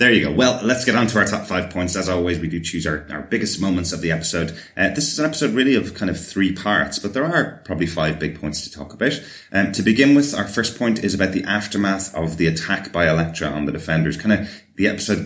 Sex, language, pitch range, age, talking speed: male, English, 80-95 Hz, 30-49, 270 wpm